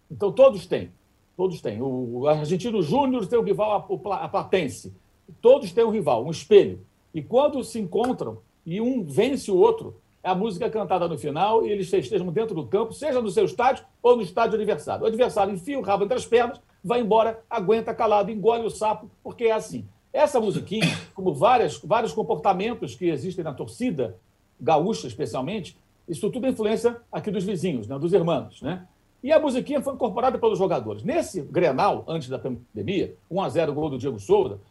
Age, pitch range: 60-79, 180-245 Hz